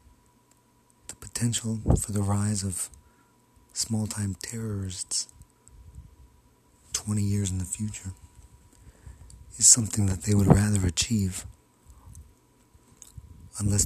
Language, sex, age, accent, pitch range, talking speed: English, male, 40-59, American, 90-110 Hz, 85 wpm